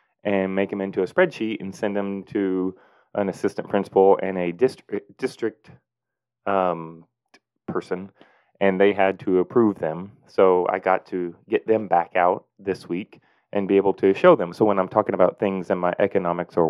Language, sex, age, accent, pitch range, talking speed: English, male, 30-49, American, 95-110 Hz, 185 wpm